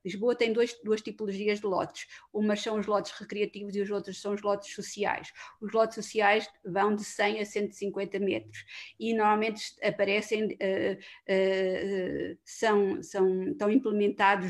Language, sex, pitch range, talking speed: Portuguese, female, 200-225 Hz, 130 wpm